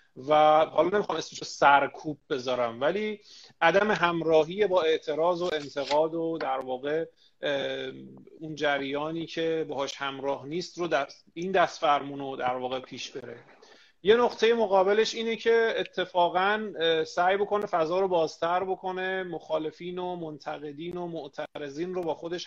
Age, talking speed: 40-59, 135 wpm